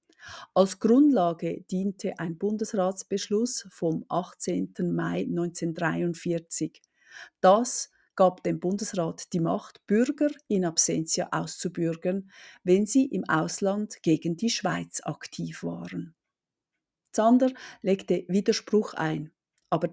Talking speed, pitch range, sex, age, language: 100 wpm, 165-205 Hz, female, 50-69, German